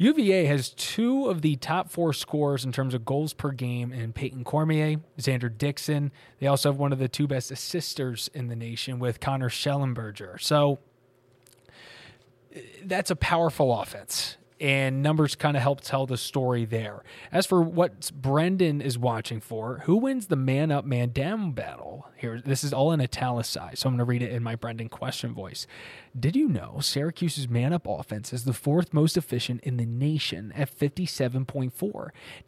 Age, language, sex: 20-39, English, male